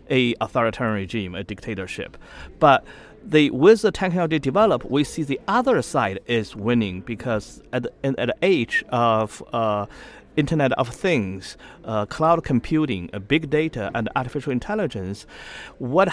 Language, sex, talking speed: English, male, 140 wpm